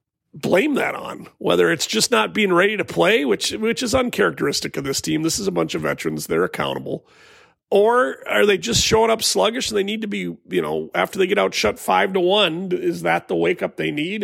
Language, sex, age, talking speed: English, male, 40-59, 230 wpm